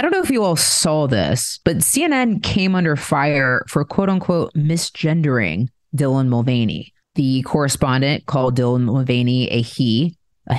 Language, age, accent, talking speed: English, 30-49, American, 155 wpm